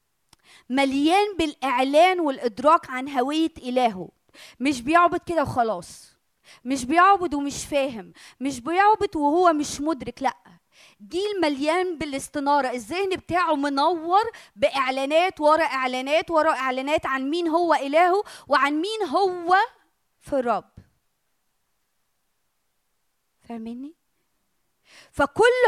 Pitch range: 275-360 Hz